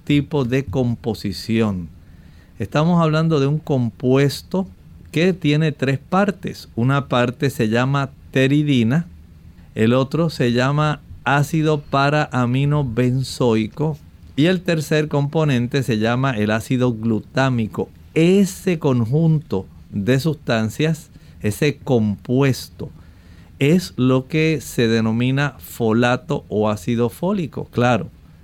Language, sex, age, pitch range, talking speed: Spanish, male, 50-69, 110-145 Hz, 105 wpm